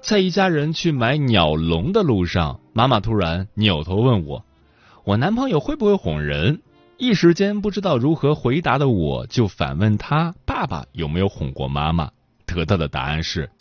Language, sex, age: Chinese, male, 30-49